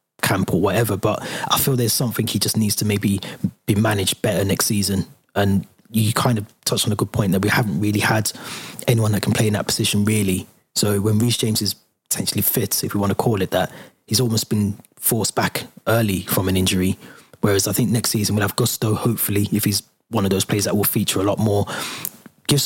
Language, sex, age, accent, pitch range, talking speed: English, male, 20-39, British, 100-115 Hz, 225 wpm